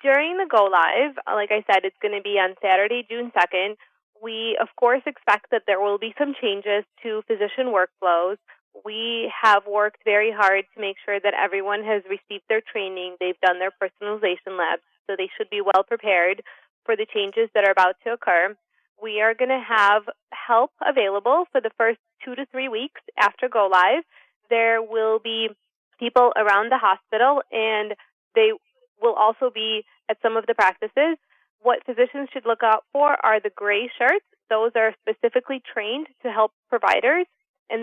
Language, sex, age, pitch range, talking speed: English, female, 20-39, 200-245 Hz, 175 wpm